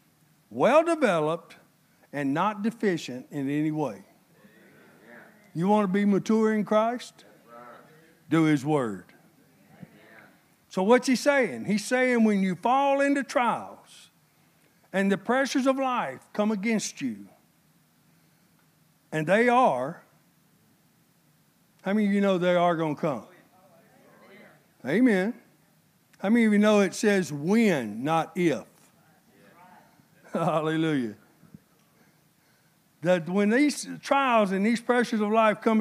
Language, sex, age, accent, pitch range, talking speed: English, male, 60-79, American, 170-230 Hz, 120 wpm